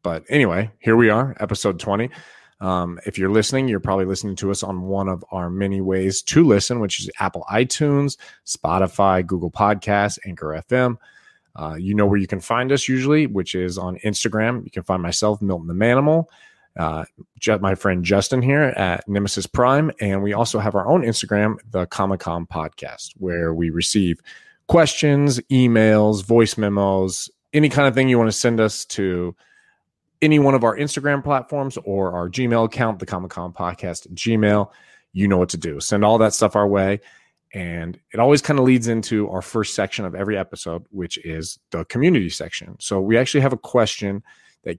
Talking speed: 190 wpm